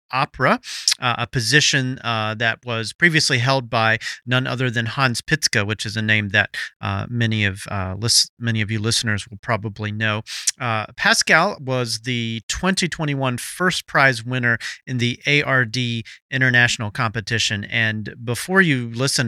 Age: 40-59